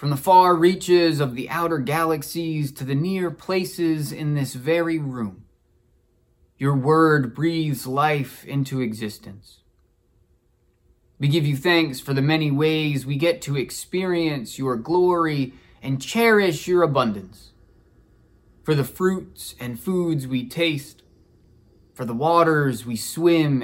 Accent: American